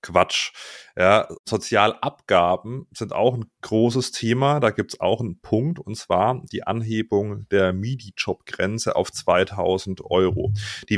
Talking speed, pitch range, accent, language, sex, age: 130 wpm, 100-125 Hz, German, German, male, 30-49